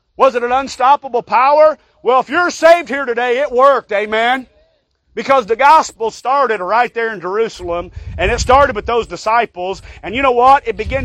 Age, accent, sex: 40-59, American, male